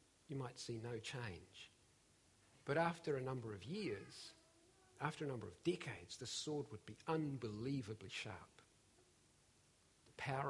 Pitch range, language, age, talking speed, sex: 115-155 Hz, English, 50-69, 135 wpm, male